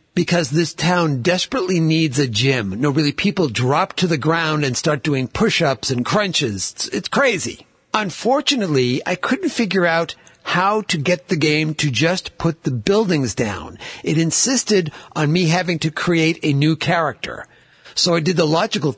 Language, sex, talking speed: English, male, 170 wpm